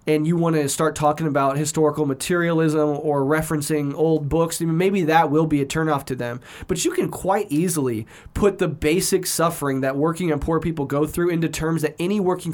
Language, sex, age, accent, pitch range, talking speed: English, male, 20-39, American, 145-175 Hz, 200 wpm